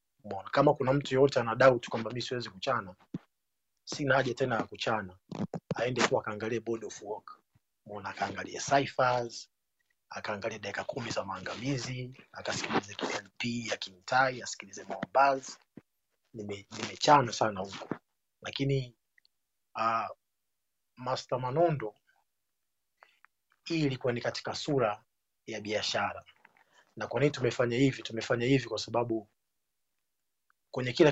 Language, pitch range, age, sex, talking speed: Swahili, 105-135 Hz, 30-49, male, 115 wpm